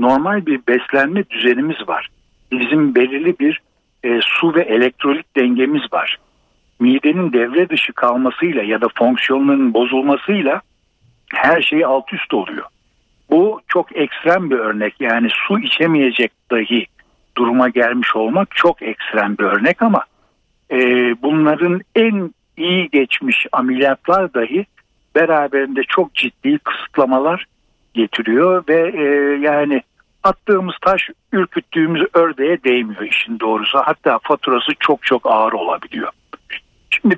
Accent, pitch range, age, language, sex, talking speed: native, 130-195 Hz, 60-79, Turkish, male, 120 wpm